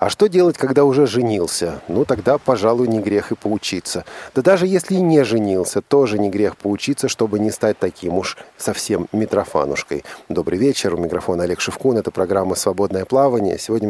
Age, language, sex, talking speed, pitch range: 40-59, Russian, male, 175 wpm, 95-120 Hz